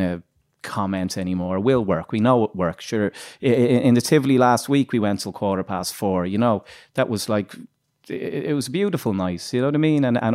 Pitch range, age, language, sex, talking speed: 100-125 Hz, 30-49, English, male, 215 wpm